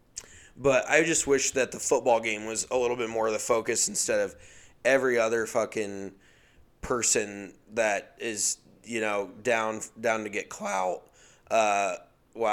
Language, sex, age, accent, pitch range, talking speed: English, male, 20-39, American, 100-115 Hz, 155 wpm